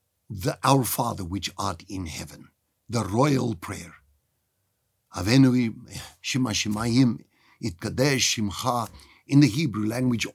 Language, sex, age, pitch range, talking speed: English, male, 50-69, 105-150 Hz, 110 wpm